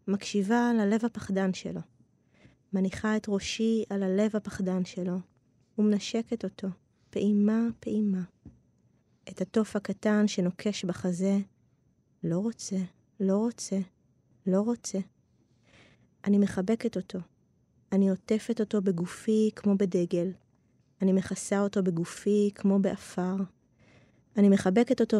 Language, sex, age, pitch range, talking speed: Hebrew, female, 20-39, 190-220 Hz, 100 wpm